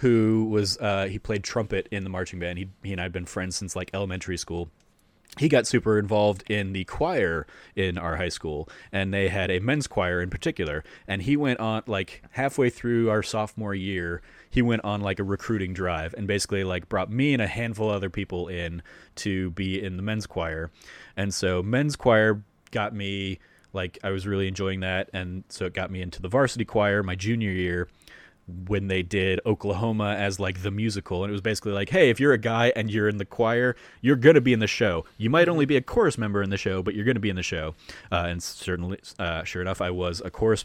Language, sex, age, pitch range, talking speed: English, male, 30-49, 95-110 Hz, 230 wpm